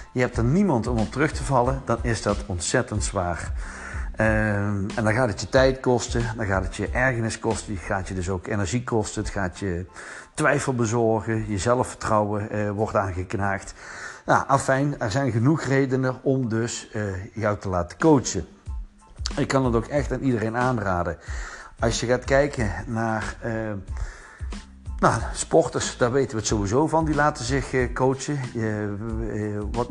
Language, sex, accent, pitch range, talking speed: Dutch, male, Dutch, 105-135 Hz, 170 wpm